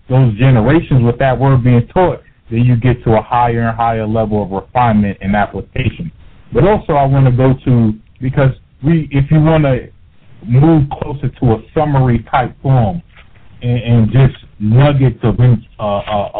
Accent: American